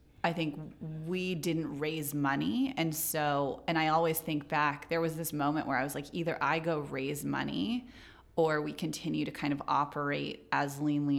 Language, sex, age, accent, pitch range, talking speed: English, female, 30-49, American, 145-165 Hz, 190 wpm